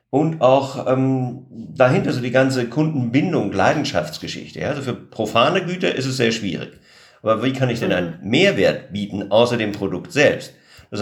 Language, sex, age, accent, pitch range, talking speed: German, male, 50-69, German, 110-145 Hz, 165 wpm